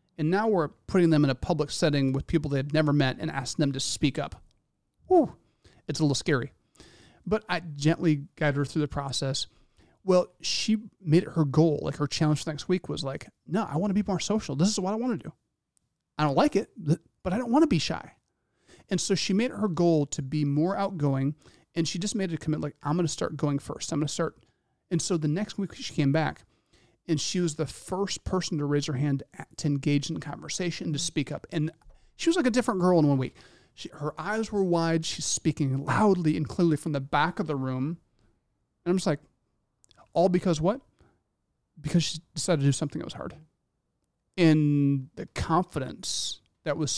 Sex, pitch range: male, 145-180 Hz